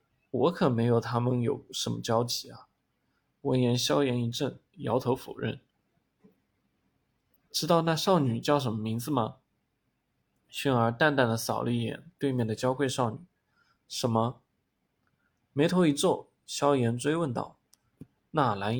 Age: 20-39